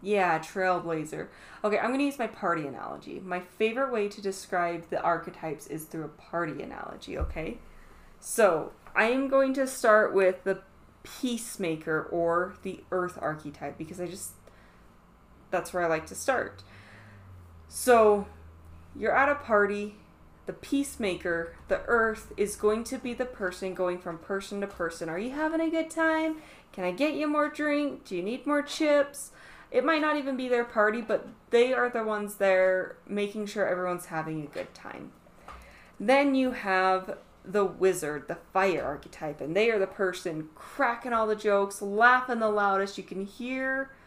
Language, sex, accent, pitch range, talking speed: English, female, American, 175-230 Hz, 170 wpm